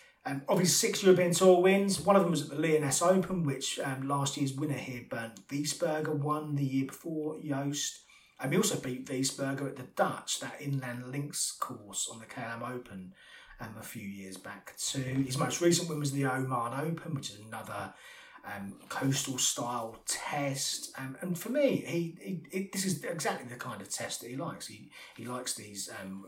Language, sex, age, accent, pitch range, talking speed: English, male, 30-49, British, 115-160 Hz, 200 wpm